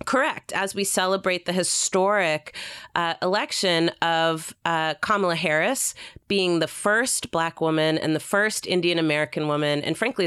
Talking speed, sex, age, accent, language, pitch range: 145 wpm, female, 30-49, American, English, 150-195 Hz